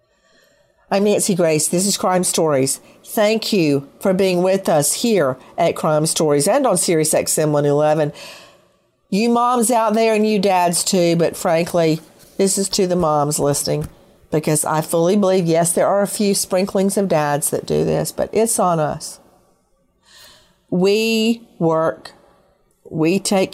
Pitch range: 165-210 Hz